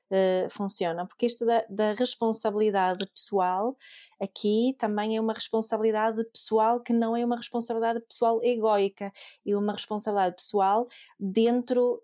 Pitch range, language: 210-245 Hz, Portuguese